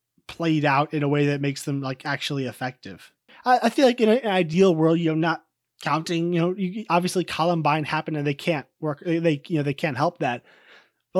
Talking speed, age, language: 220 wpm, 20-39, English